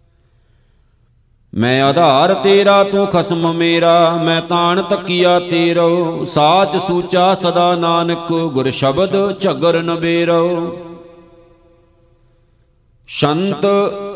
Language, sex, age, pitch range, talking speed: Punjabi, male, 50-69, 165-195 Hz, 85 wpm